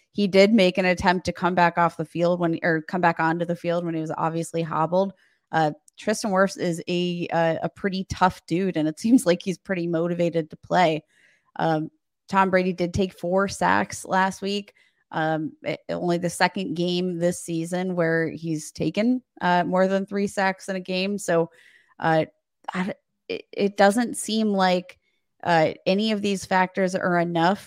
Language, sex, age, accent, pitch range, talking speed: English, female, 20-39, American, 165-190 Hz, 185 wpm